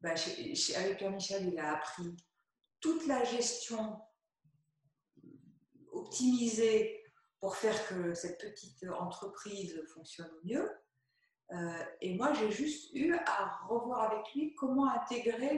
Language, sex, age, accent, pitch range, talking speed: French, female, 50-69, French, 160-250 Hz, 125 wpm